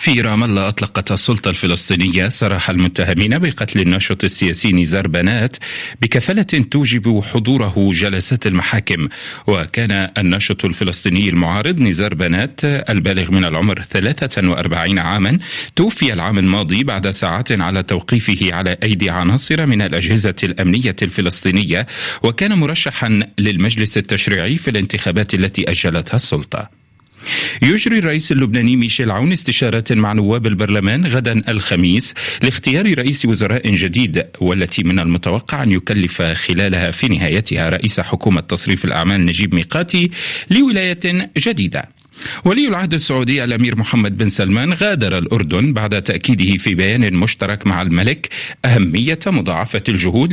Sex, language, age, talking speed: male, Arabic, 40-59, 120 wpm